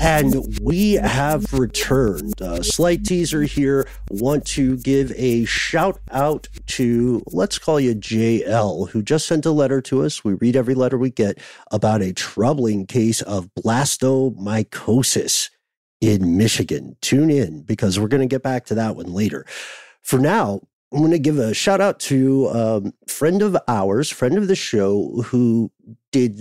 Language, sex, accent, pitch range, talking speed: English, male, American, 105-140 Hz, 165 wpm